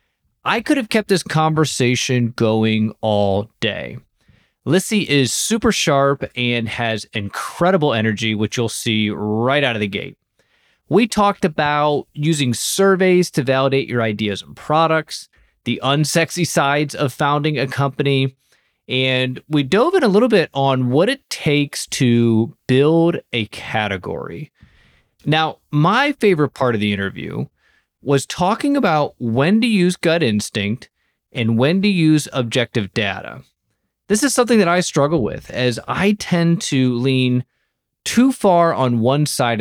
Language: English